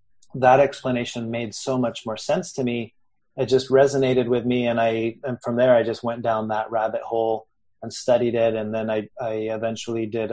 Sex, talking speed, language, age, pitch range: male, 205 wpm, English, 30-49, 110-130 Hz